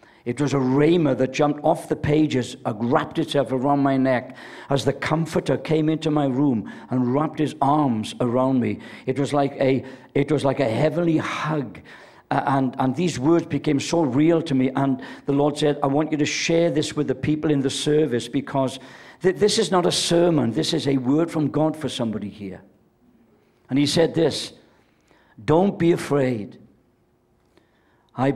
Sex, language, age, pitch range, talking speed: male, English, 60-79, 135-165 Hz, 185 wpm